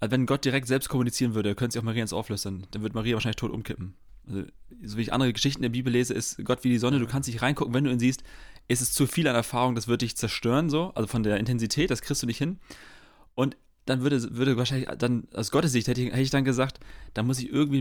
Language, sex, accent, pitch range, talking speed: German, male, German, 115-140 Hz, 275 wpm